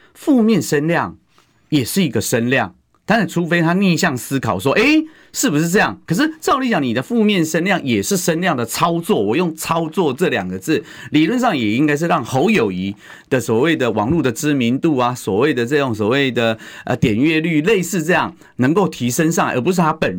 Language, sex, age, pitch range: Chinese, male, 30-49, 120-185 Hz